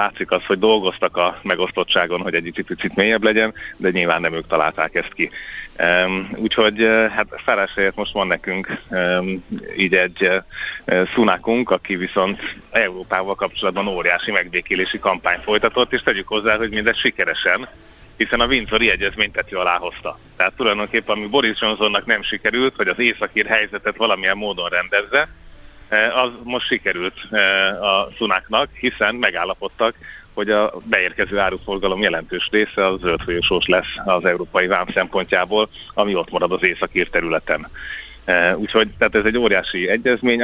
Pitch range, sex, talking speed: 90-110 Hz, male, 140 wpm